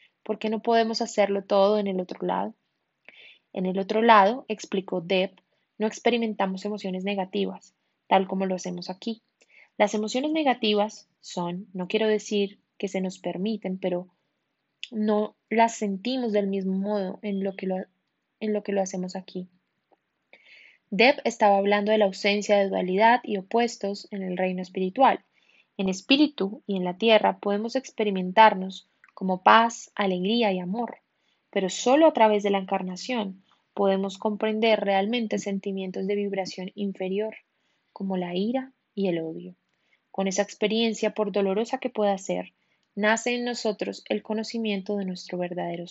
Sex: female